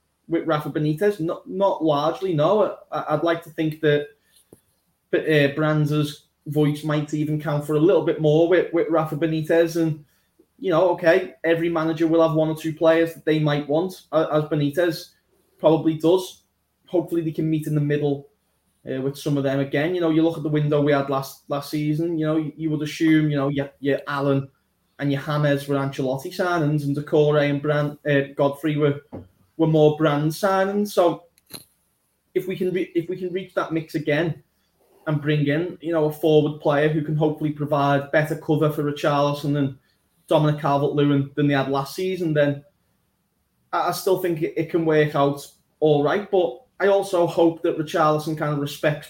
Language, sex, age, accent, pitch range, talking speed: English, male, 20-39, British, 145-170 Hz, 195 wpm